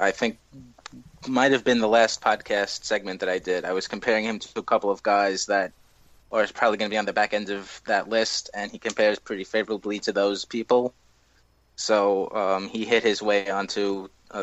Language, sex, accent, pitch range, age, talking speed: English, male, American, 100-115 Hz, 20-39, 210 wpm